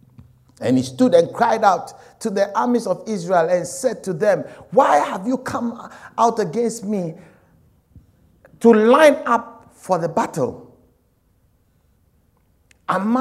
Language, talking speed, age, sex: English, 130 wpm, 60-79, male